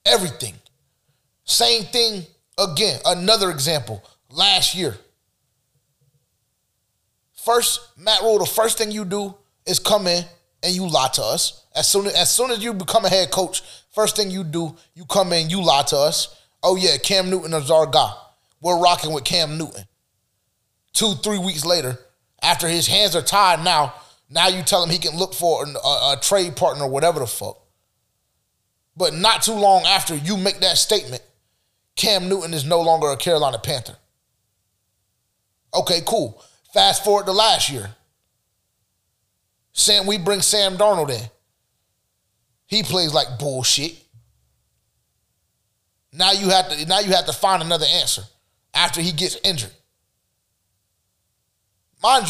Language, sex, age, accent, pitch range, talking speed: English, male, 20-39, American, 115-195 Hz, 155 wpm